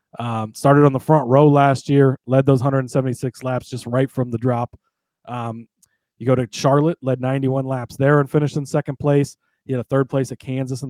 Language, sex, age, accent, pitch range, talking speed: English, male, 30-49, American, 125-150 Hz, 215 wpm